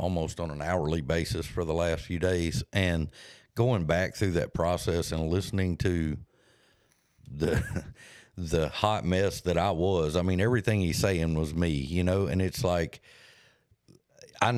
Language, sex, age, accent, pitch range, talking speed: English, male, 50-69, American, 85-110 Hz, 160 wpm